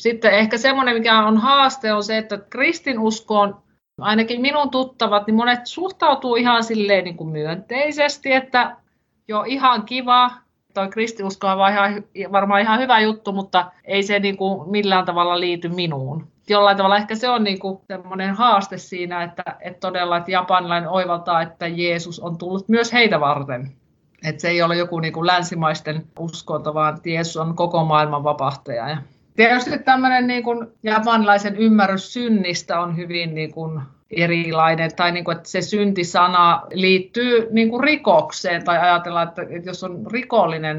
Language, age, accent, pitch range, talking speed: Finnish, 50-69, native, 170-220 Hz, 145 wpm